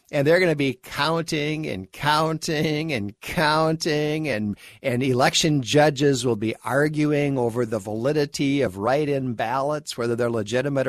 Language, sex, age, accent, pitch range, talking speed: English, male, 50-69, American, 125-160 Hz, 145 wpm